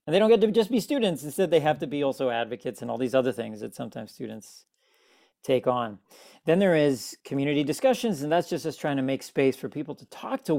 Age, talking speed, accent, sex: 40-59, 245 wpm, American, male